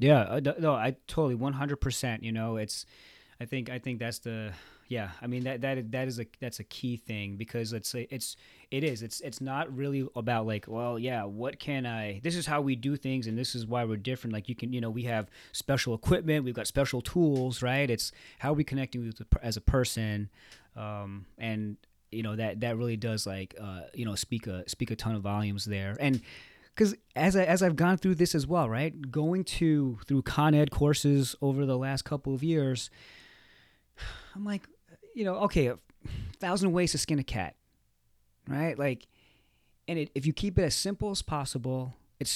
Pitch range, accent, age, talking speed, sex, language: 115-150 Hz, American, 30-49, 205 wpm, male, English